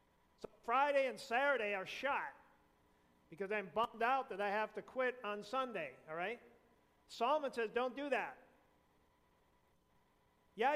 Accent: American